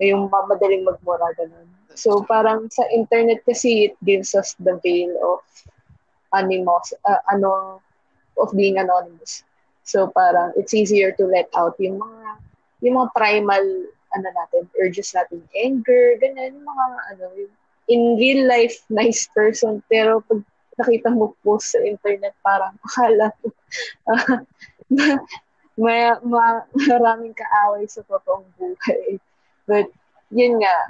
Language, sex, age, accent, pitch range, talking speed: Filipino, female, 20-39, native, 190-235 Hz, 125 wpm